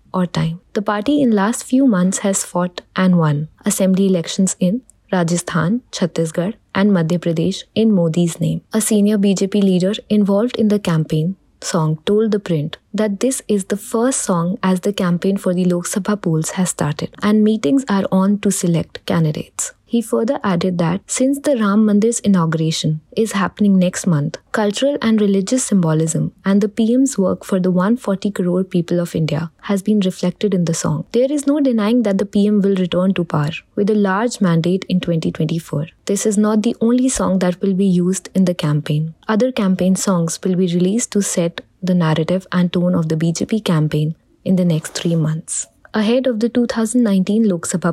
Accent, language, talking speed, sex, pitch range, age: Indian, English, 185 wpm, female, 175-215 Hz, 20-39